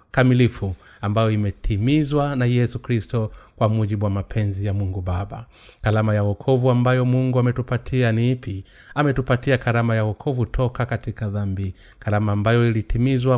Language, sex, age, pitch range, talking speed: Swahili, male, 30-49, 105-125 Hz, 140 wpm